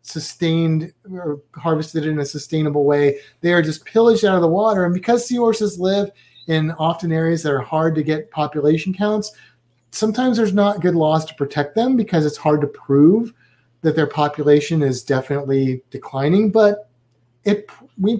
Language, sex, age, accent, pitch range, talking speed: English, male, 30-49, American, 145-210 Hz, 170 wpm